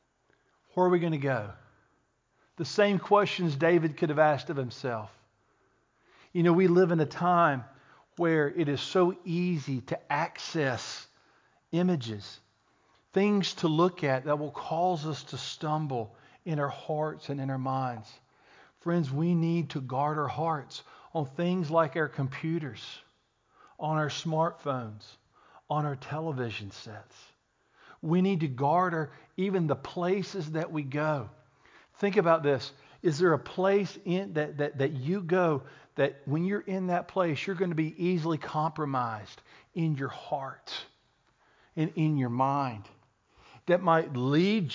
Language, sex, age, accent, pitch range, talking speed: English, male, 50-69, American, 135-170 Hz, 150 wpm